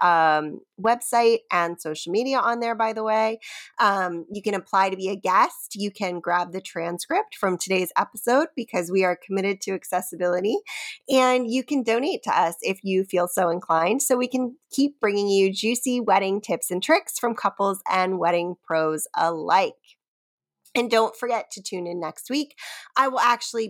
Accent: American